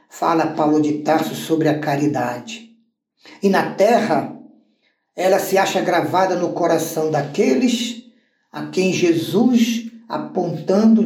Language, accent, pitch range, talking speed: Portuguese, Brazilian, 150-230 Hz, 115 wpm